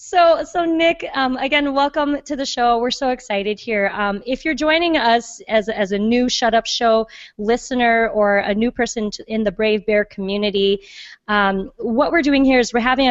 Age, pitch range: 20-39, 195-235 Hz